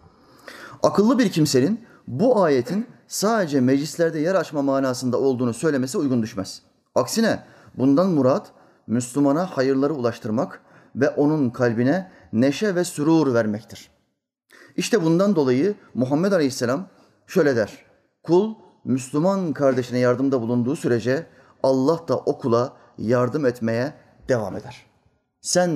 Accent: native